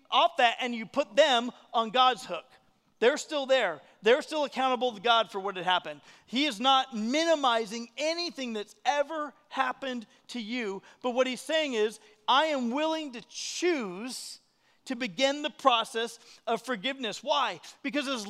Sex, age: male, 40-59